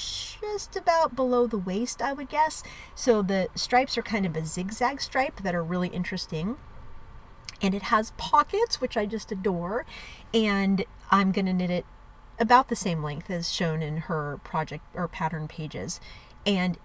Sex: female